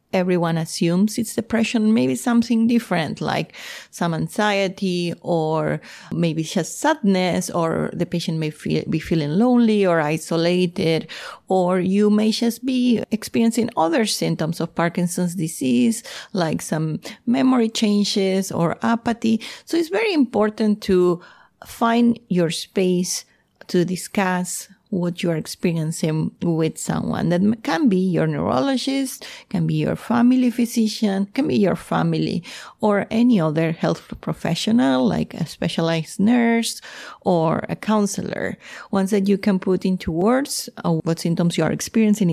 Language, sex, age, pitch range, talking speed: English, female, 30-49, 170-225 Hz, 135 wpm